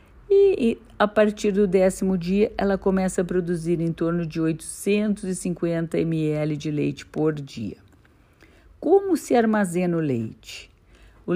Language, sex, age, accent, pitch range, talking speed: Portuguese, female, 50-69, Brazilian, 130-185 Hz, 135 wpm